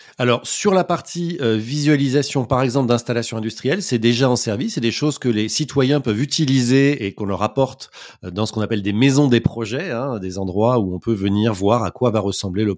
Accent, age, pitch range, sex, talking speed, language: French, 30-49, 100-125 Hz, male, 215 wpm, French